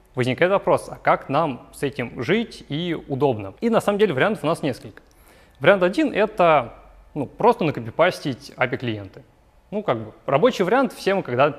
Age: 30-49